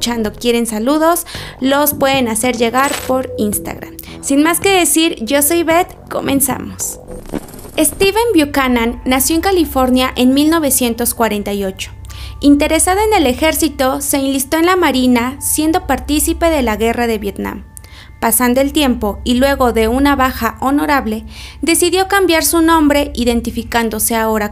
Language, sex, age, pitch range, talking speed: Spanish, female, 30-49, 230-310 Hz, 130 wpm